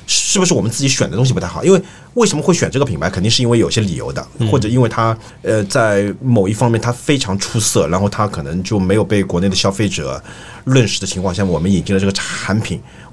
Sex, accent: male, native